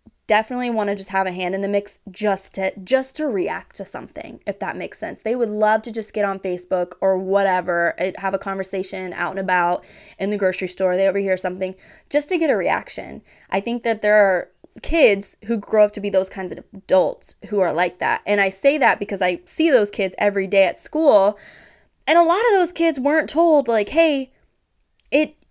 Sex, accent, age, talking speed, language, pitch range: female, American, 20-39, 215 wpm, English, 195-265 Hz